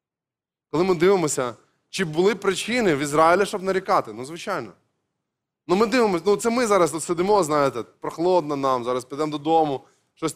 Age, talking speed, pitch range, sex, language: 20-39, 160 wpm, 145-195 Hz, male, Ukrainian